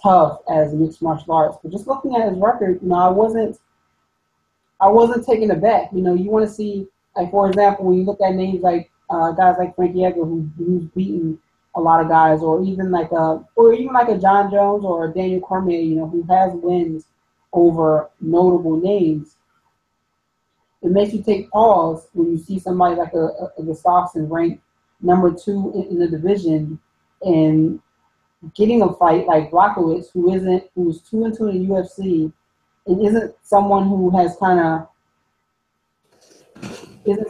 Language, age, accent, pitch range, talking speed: English, 30-49, American, 160-195 Hz, 180 wpm